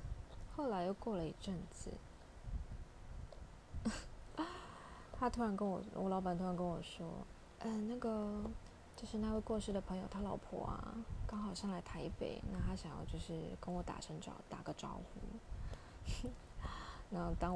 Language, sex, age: Chinese, female, 20-39